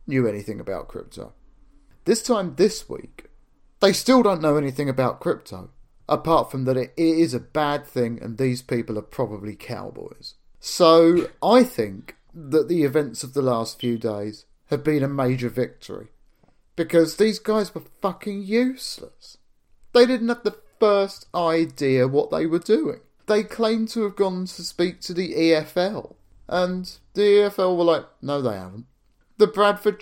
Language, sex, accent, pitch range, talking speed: English, male, British, 120-185 Hz, 160 wpm